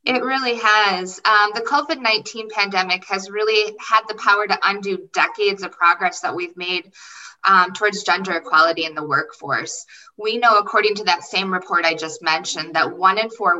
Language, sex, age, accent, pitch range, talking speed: English, female, 20-39, American, 165-210 Hz, 180 wpm